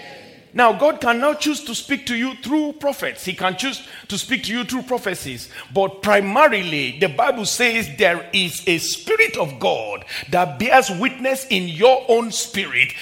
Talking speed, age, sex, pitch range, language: 175 wpm, 40-59, male, 180-245 Hz, English